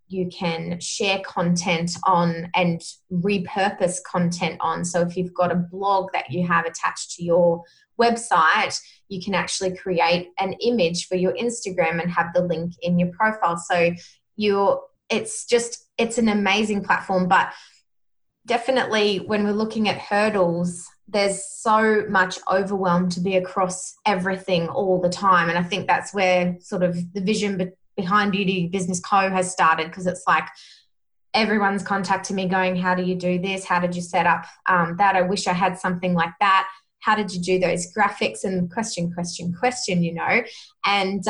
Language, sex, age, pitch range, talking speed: English, female, 20-39, 175-205 Hz, 175 wpm